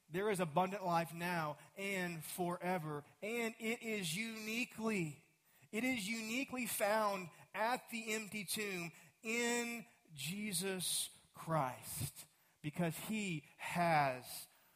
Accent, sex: American, male